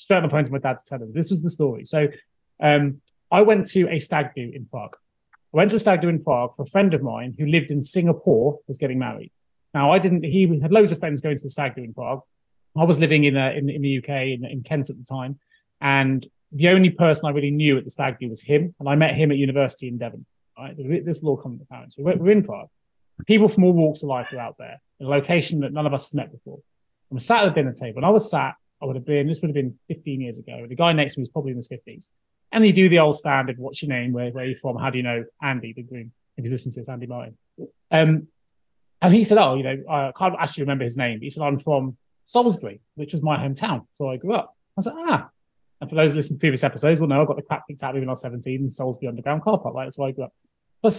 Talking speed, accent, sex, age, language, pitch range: 280 wpm, British, male, 30-49, English, 130-165 Hz